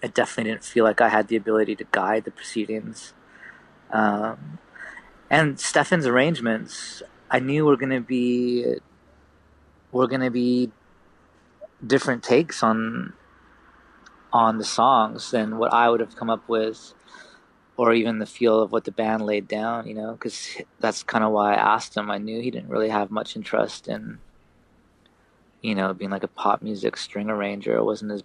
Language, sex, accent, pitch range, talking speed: English, male, American, 105-120 Hz, 175 wpm